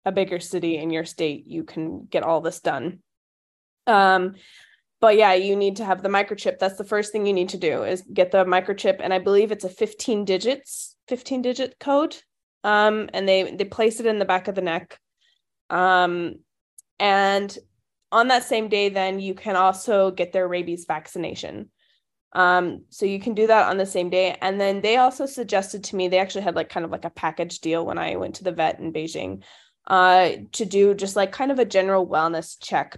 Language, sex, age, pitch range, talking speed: English, female, 20-39, 180-215 Hz, 210 wpm